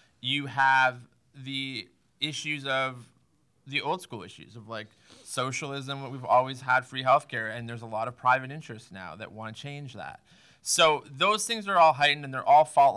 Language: English